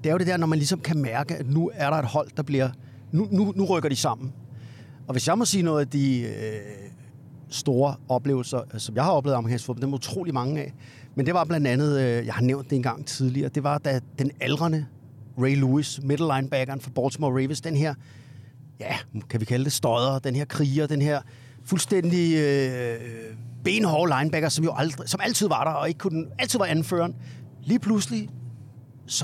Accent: native